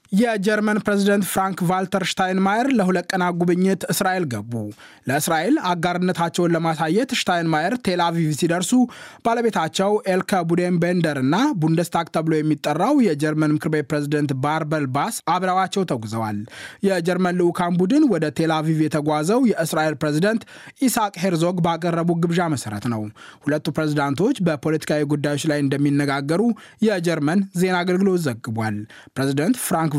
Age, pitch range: 20-39, 145-185 Hz